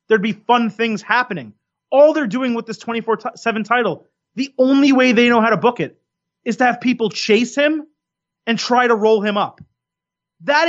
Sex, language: male, English